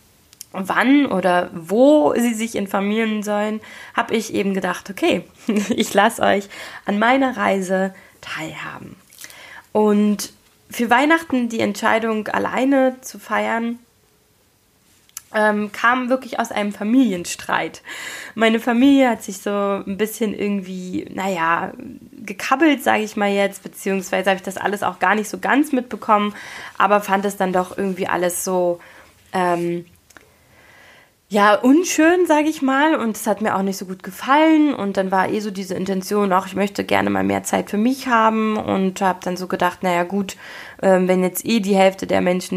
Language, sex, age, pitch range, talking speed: German, female, 20-39, 195-245 Hz, 160 wpm